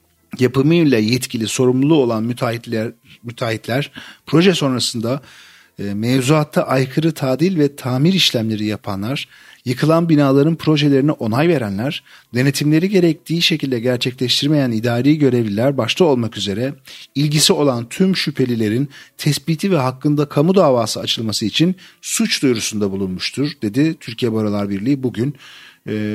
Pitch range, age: 115-150 Hz, 50-69